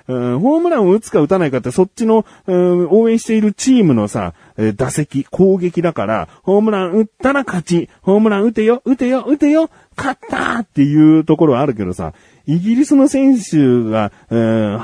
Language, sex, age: Japanese, male, 40-59